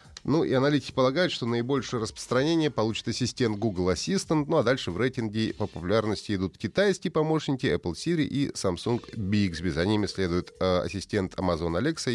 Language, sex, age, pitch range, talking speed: Russian, male, 30-49, 95-125 Hz, 160 wpm